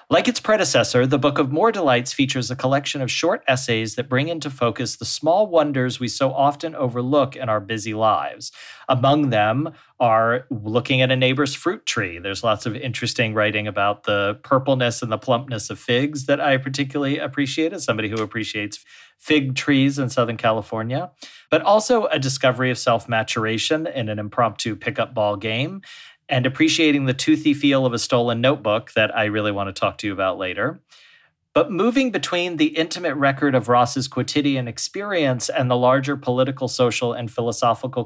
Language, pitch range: English, 115-140 Hz